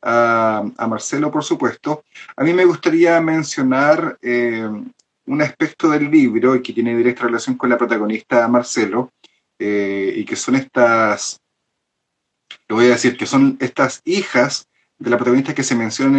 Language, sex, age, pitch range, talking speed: Spanish, male, 30-49, 115-140 Hz, 155 wpm